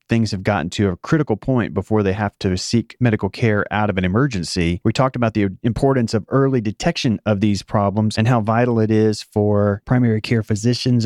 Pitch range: 105-125 Hz